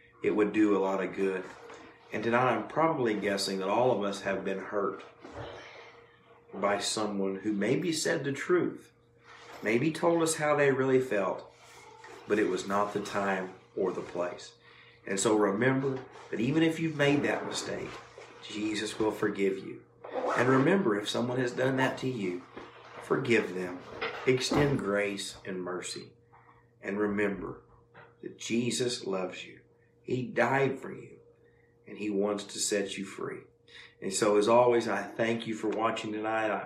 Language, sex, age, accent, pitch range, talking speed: English, male, 50-69, American, 100-120 Hz, 160 wpm